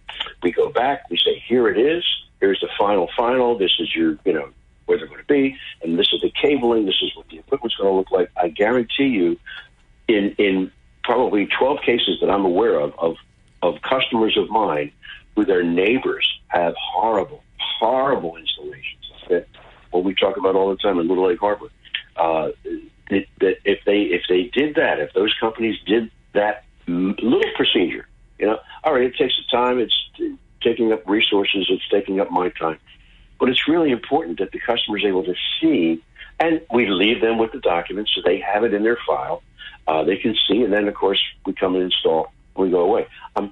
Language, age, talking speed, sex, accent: English, 60-79, 200 wpm, male, American